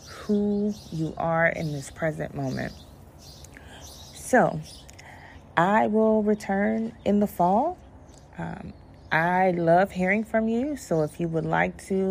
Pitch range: 160-215 Hz